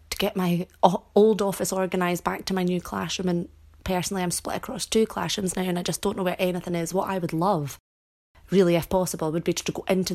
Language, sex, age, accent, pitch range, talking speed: English, female, 20-39, British, 175-195 Hz, 230 wpm